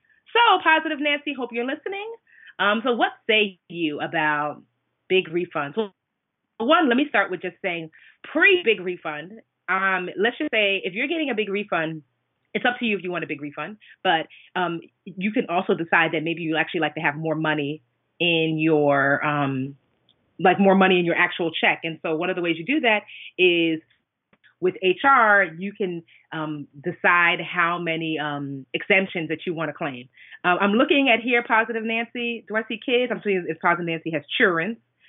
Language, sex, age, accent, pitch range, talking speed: English, female, 30-49, American, 160-215 Hz, 190 wpm